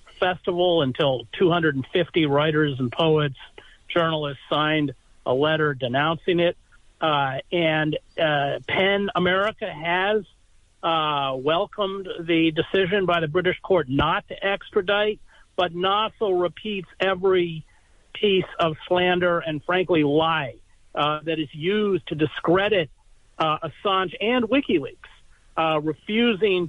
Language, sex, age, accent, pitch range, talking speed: English, male, 50-69, American, 150-185 Hz, 115 wpm